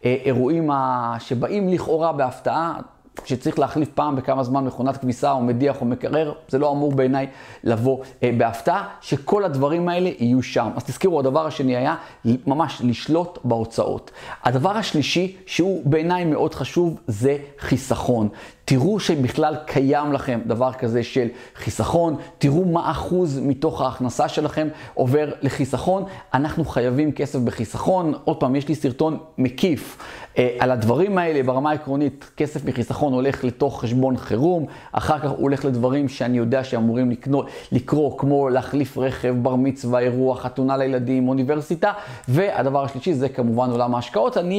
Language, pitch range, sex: Hebrew, 125-150 Hz, male